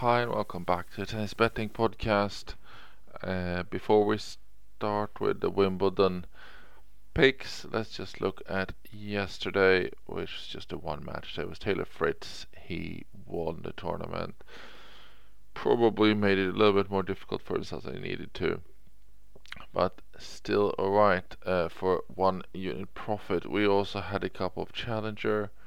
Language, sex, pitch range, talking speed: English, male, 90-105 Hz, 150 wpm